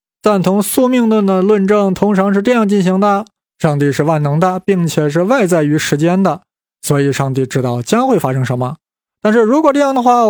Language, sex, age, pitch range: Chinese, male, 20-39, 150-215 Hz